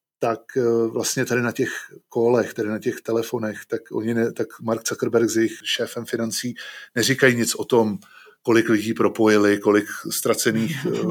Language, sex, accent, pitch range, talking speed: Czech, male, native, 110-125 Hz, 155 wpm